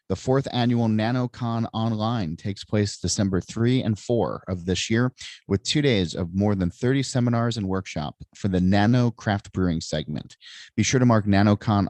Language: English